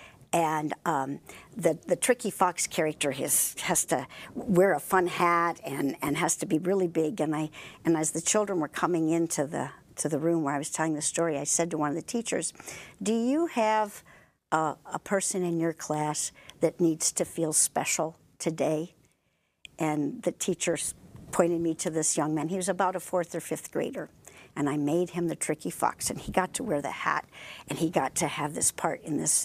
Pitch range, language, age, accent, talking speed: 155-185 Hz, English, 60-79, American, 210 wpm